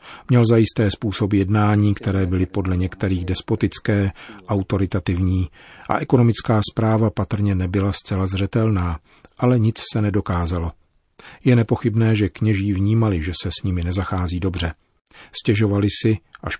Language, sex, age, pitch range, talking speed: Czech, male, 40-59, 95-115 Hz, 125 wpm